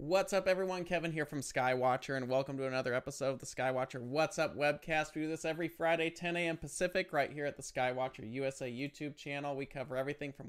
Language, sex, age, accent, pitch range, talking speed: English, male, 30-49, American, 130-165 Hz, 215 wpm